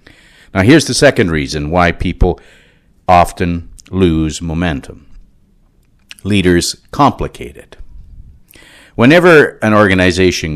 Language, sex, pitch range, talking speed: English, male, 75-100 Hz, 90 wpm